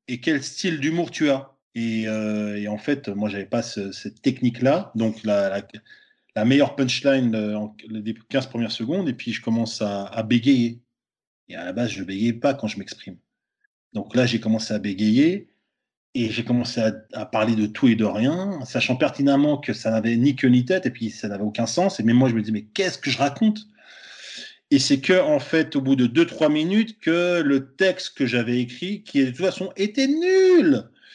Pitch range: 115-195 Hz